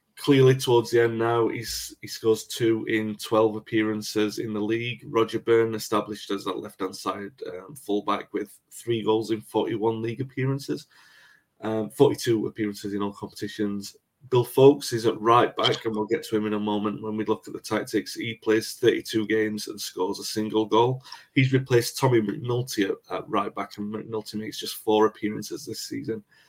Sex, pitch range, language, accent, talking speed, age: male, 105-115 Hz, English, British, 180 wpm, 30-49